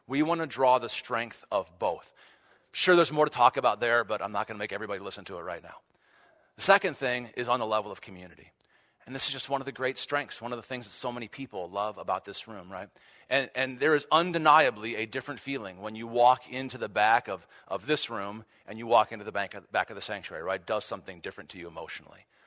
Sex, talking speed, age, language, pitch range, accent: male, 240 wpm, 40-59, English, 125-160 Hz, American